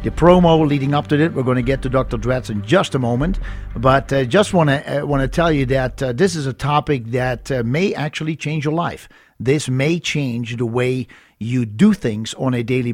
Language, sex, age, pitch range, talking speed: English, male, 50-69, 125-155 Hz, 235 wpm